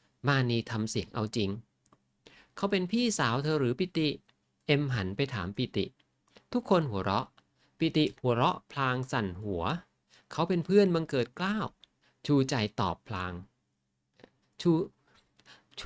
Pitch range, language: 105-155 Hz, Thai